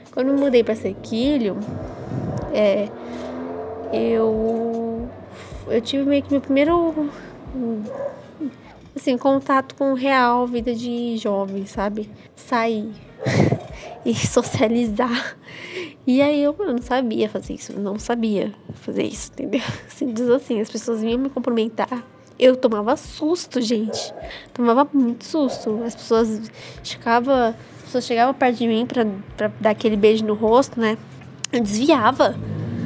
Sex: female